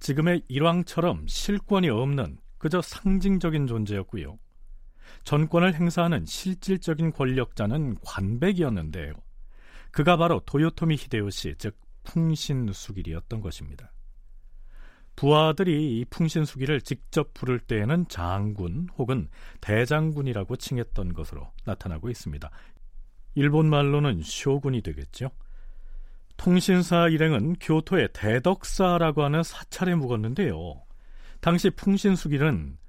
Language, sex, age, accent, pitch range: Korean, male, 40-59, native, 100-165 Hz